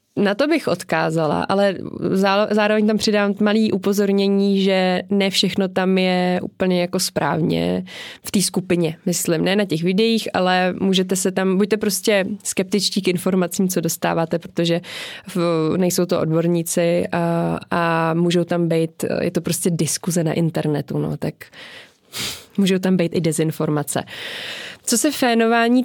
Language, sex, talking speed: Czech, female, 145 wpm